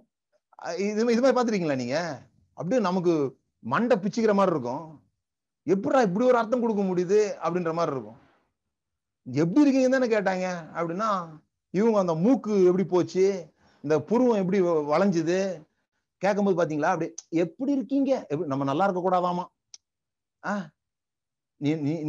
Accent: native